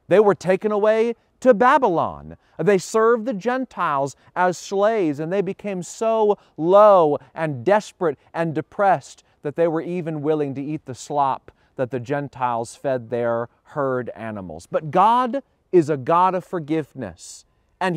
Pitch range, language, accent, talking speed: 135-195 Hz, English, American, 150 wpm